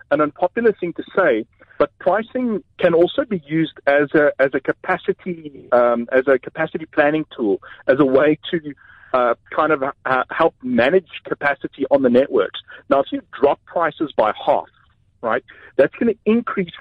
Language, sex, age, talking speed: English, male, 30-49, 170 wpm